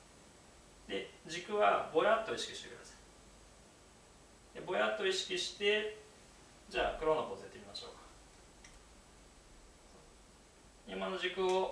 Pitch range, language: 135-215 Hz, Japanese